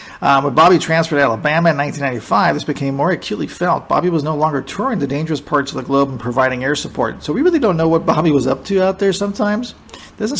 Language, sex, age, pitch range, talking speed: English, male, 40-59, 140-170 Hz, 250 wpm